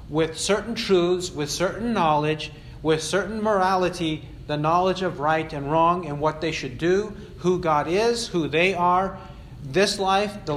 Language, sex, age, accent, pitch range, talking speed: English, male, 50-69, American, 145-185 Hz, 165 wpm